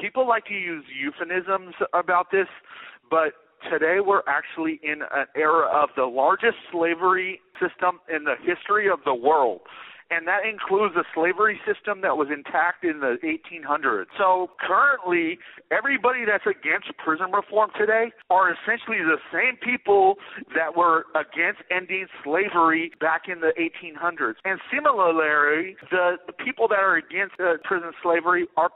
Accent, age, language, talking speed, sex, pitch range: American, 40-59, English, 145 wpm, male, 170-225 Hz